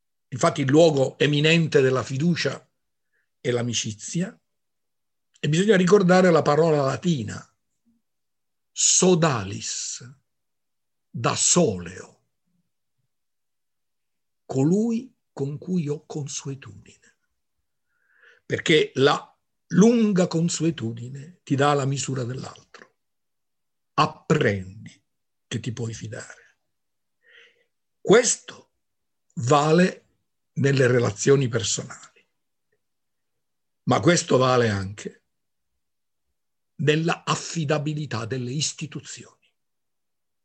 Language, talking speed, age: Italian, 75 wpm, 60-79